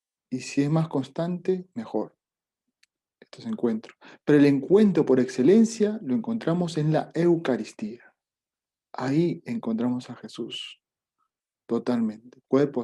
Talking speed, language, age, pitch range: 115 wpm, Spanish, 40-59, 120-165 Hz